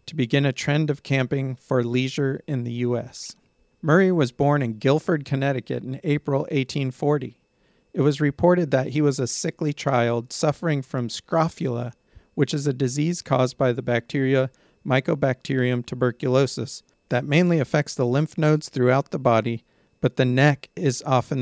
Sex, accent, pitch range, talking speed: male, American, 125-150 Hz, 155 wpm